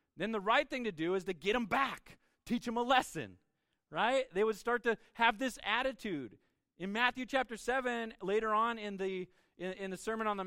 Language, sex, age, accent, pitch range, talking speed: English, male, 30-49, American, 195-245 Hz, 210 wpm